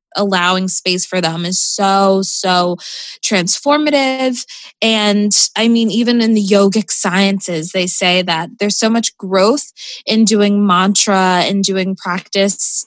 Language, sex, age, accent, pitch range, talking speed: English, female, 20-39, American, 190-225 Hz, 135 wpm